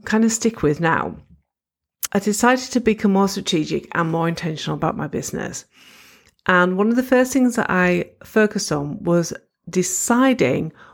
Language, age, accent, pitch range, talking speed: English, 50-69, British, 175-225 Hz, 160 wpm